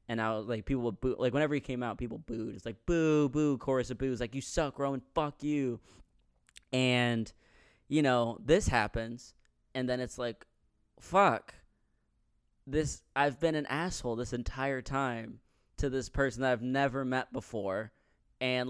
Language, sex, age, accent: English, male, 20-39, American